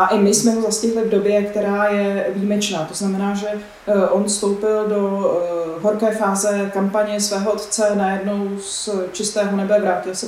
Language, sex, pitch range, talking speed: Czech, female, 195-215 Hz, 165 wpm